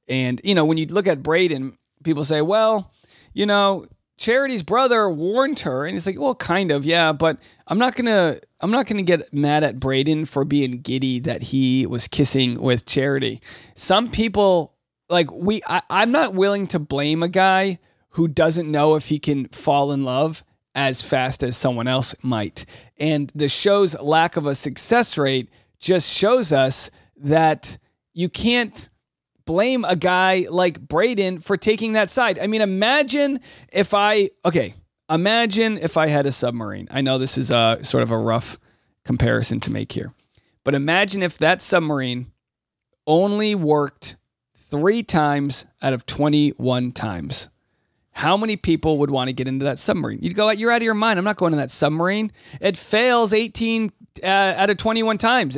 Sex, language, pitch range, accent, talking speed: male, English, 135-205 Hz, American, 175 wpm